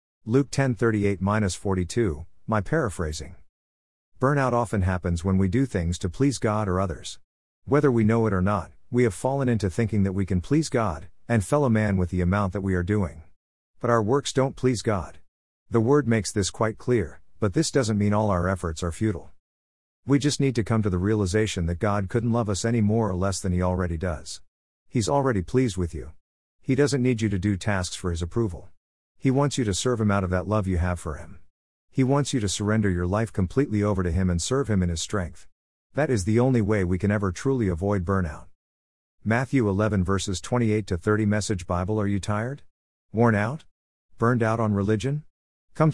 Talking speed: 210 wpm